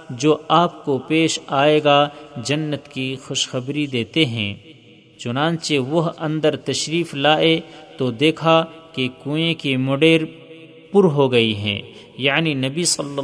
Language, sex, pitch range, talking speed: Urdu, male, 135-165 Hz, 130 wpm